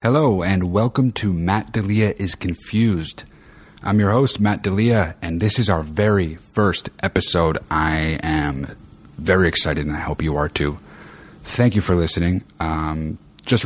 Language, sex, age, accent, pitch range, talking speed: English, male, 30-49, American, 80-110 Hz, 160 wpm